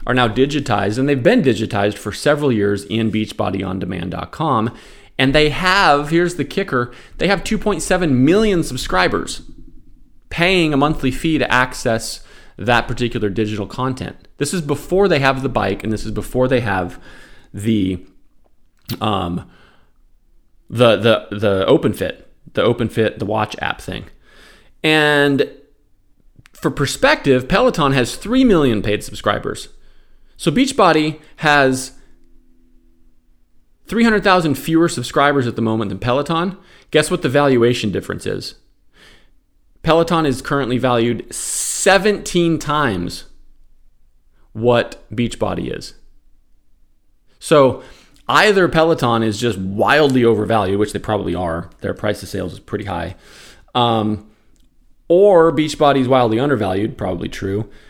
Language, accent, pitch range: English, American, 100-145 Hz